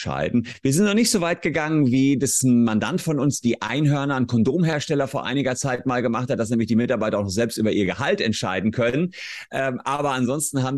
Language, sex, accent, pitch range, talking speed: German, male, German, 105-130 Hz, 215 wpm